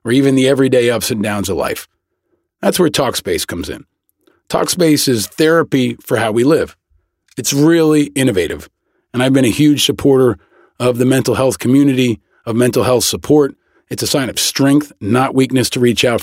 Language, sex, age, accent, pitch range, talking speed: English, male, 40-59, American, 115-145 Hz, 180 wpm